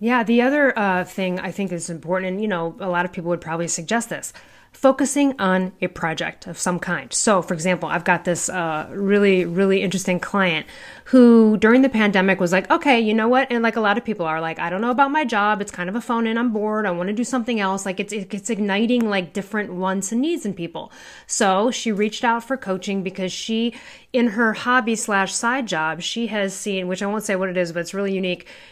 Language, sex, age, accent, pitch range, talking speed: English, female, 30-49, American, 185-240 Hz, 240 wpm